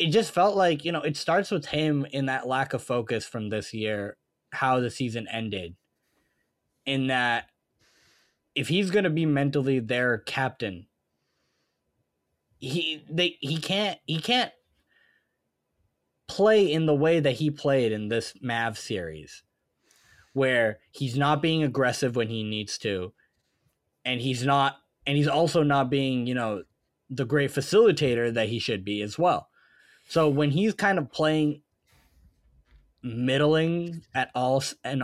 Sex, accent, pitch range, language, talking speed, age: male, American, 115-155 Hz, English, 145 wpm, 20-39